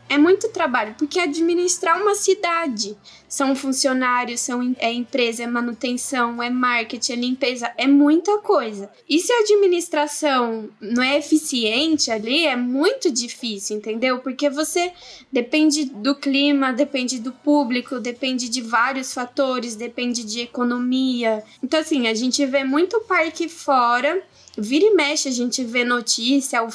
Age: 10-29